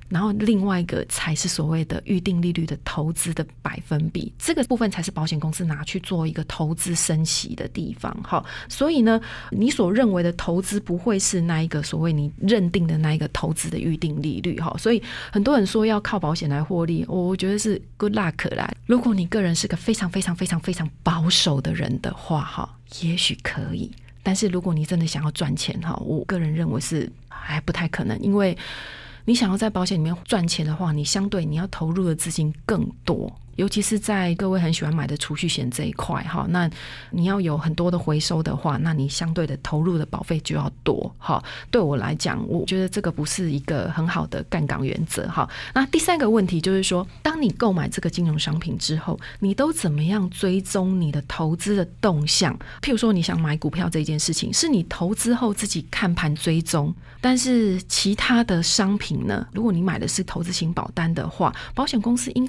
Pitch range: 160-200 Hz